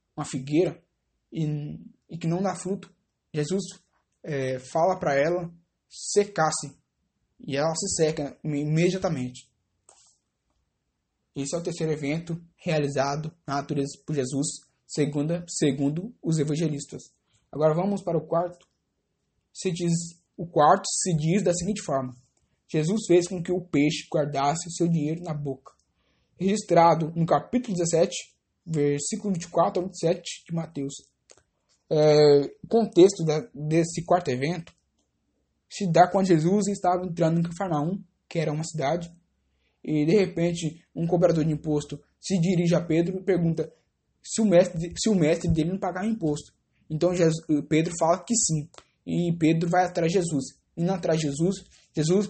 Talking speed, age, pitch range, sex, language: 140 wpm, 20-39, 150-180 Hz, male, English